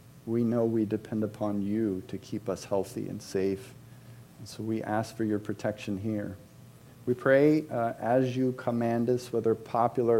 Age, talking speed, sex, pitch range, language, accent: 40-59, 170 wpm, male, 105-130 Hz, English, American